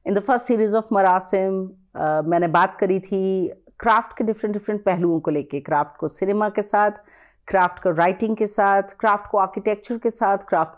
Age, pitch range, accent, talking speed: 40-59, 170-215 Hz, native, 185 wpm